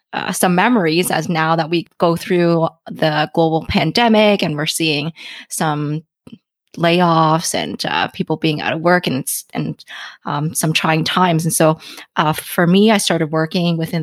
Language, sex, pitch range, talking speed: English, female, 160-190 Hz, 165 wpm